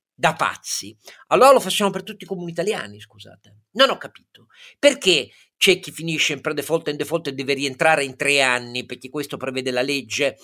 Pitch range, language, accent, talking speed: 165-230 Hz, Italian, native, 195 wpm